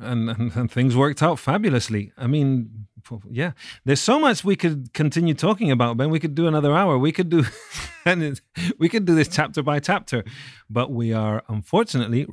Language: English